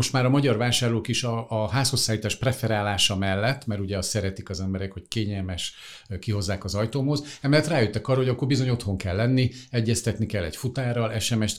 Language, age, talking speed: Hungarian, 50-69, 180 wpm